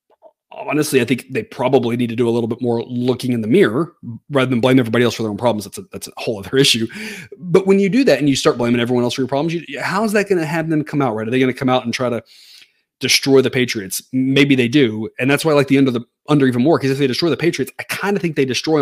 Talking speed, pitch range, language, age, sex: 305 wpm, 115-145 Hz, English, 30-49, male